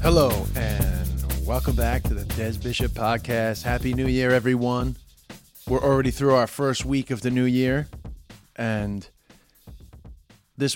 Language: English